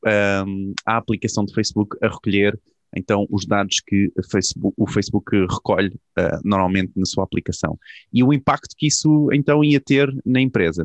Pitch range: 100-125 Hz